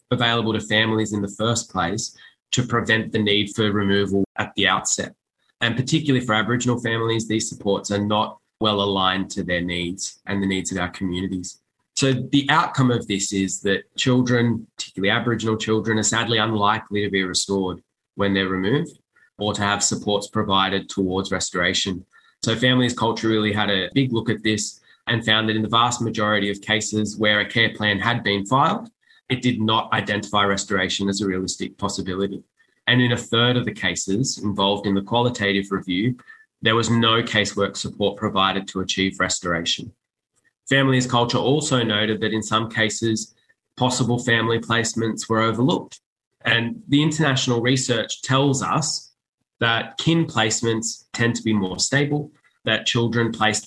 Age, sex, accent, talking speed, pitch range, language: 20-39, male, Australian, 165 wpm, 100-120 Hz, English